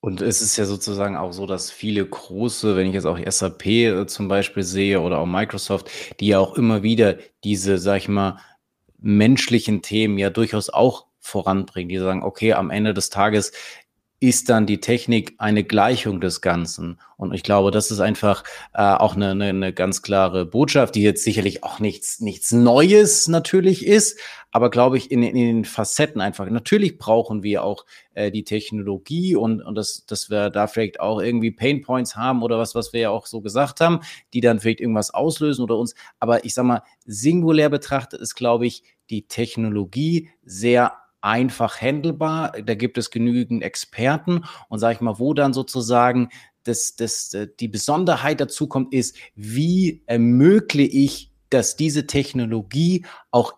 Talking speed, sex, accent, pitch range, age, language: 175 wpm, male, German, 105-135 Hz, 30-49, German